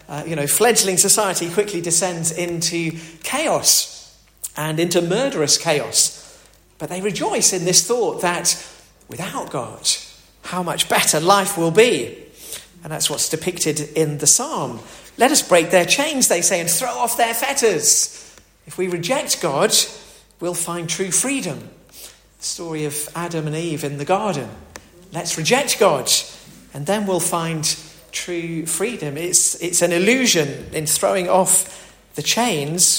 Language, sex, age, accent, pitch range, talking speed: English, male, 40-59, British, 140-180 Hz, 150 wpm